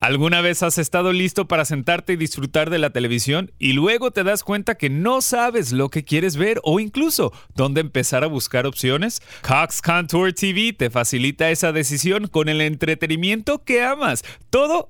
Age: 30-49